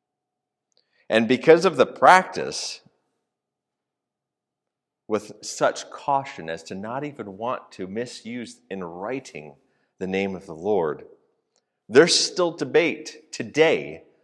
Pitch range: 105-155 Hz